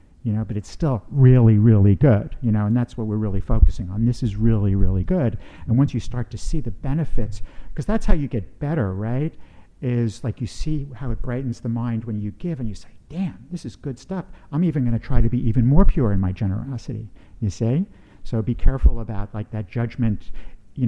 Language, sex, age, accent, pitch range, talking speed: English, male, 50-69, American, 100-120 Hz, 230 wpm